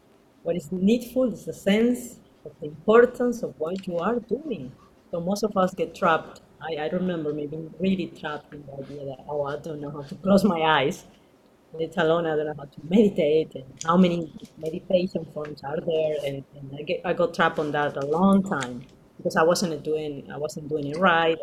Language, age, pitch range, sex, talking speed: English, 30-49, 150-195 Hz, female, 215 wpm